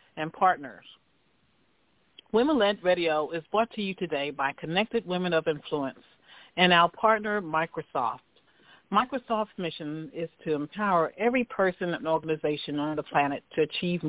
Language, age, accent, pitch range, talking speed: English, 50-69, American, 155-195 Hz, 140 wpm